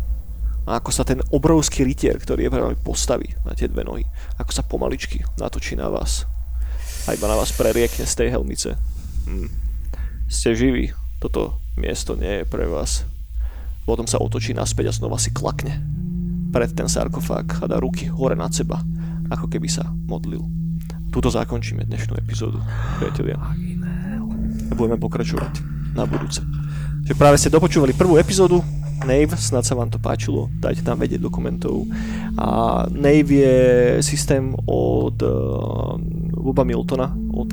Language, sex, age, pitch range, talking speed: Slovak, male, 30-49, 110-165 Hz, 145 wpm